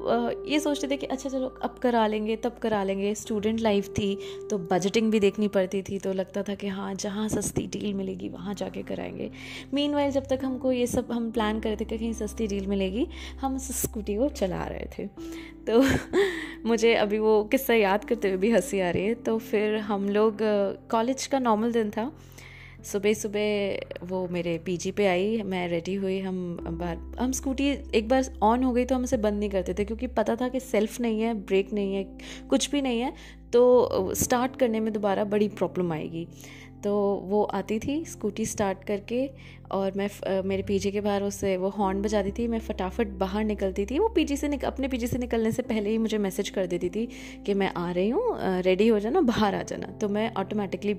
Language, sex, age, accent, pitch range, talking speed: Hindi, female, 20-39, native, 195-245 Hz, 215 wpm